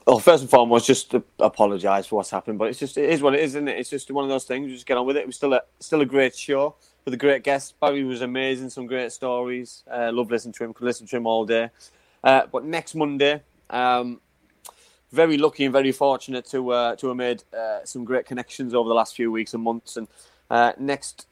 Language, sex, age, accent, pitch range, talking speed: English, male, 20-39, British, 115-130 Hz, 250 wpm